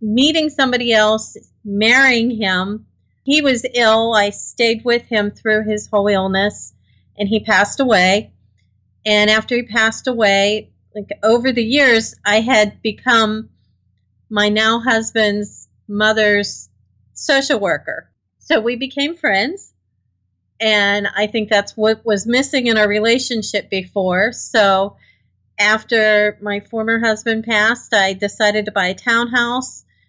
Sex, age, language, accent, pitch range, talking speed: female, 40-59, English, American, 205-240 Hz, 130 wpm